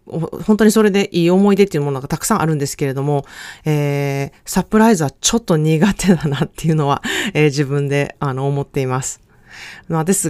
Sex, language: female, Japanese